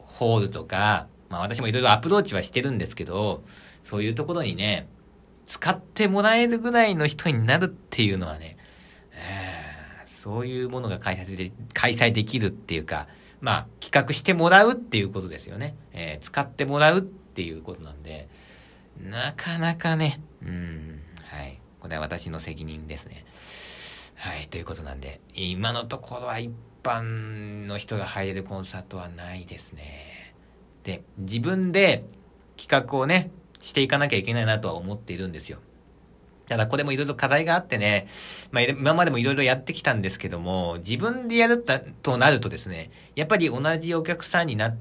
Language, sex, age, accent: Japanese, male, 40-59, native